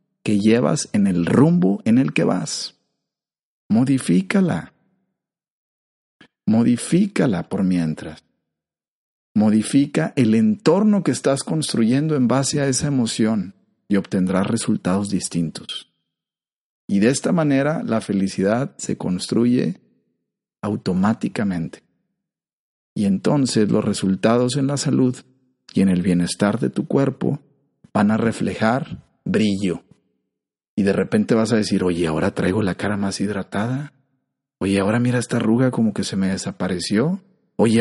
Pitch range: 100-145 Hz